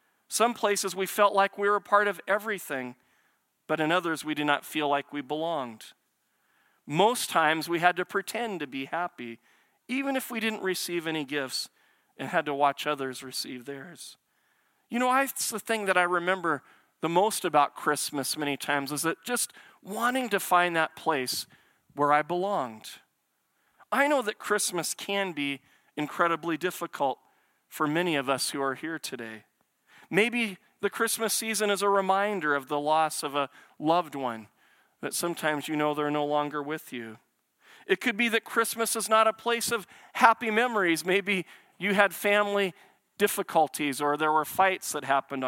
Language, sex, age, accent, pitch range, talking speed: English, male, 40-59, American, 150-205 Hz, 175 wpm